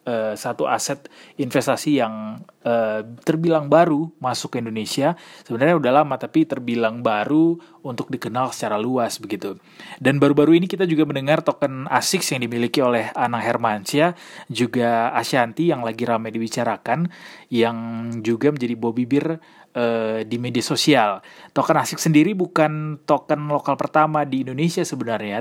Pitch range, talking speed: 120-155 Hz, 135 wpm